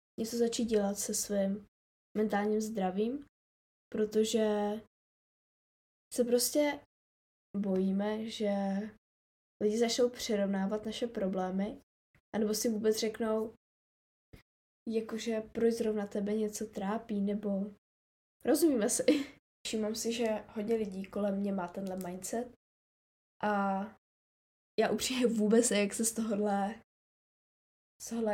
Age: 10-29